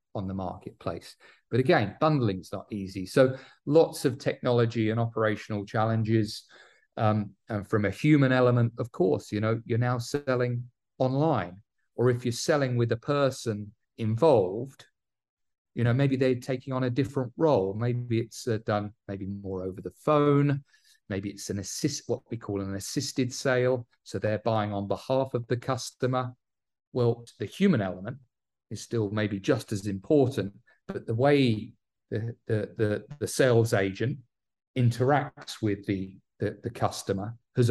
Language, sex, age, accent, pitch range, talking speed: English, male, 40-59, British, 105-130 Hz, 160 wpm